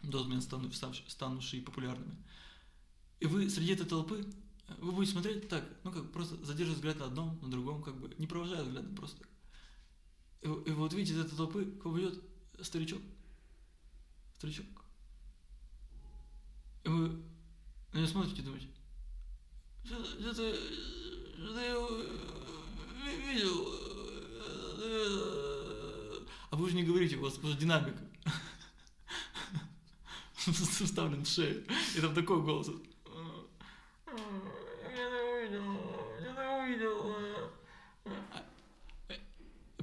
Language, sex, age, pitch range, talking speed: Russian, male, 20-39, 130-195 Hz, 110 wpm